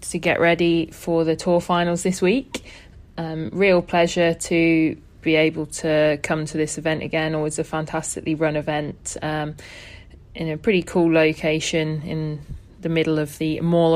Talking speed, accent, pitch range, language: 165 wpm, British, 155-175 Hz, English